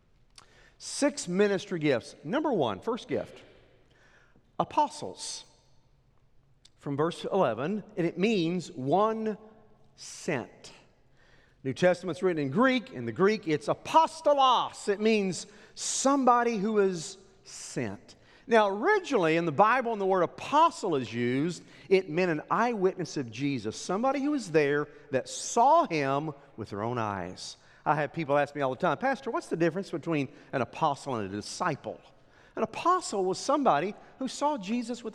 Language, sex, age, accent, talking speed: English, male, 50-69, American, 145 wpm